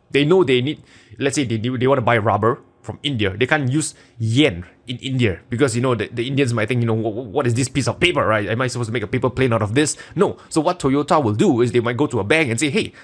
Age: 20-39